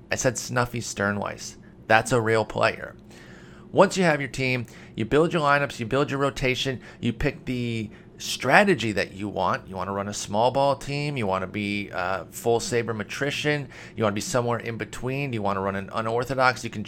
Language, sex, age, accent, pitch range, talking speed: English, male, 30-49, American, 110-135 Hz, 210 wpm